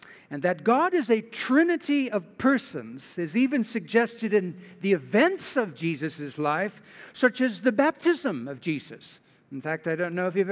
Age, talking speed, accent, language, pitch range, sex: 60-79, 170 wpm, American, English, 185-270 Hz, male